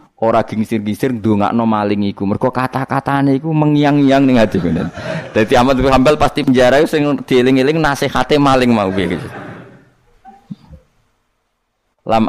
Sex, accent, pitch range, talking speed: male, native, 110-150 Hz, 125 wpm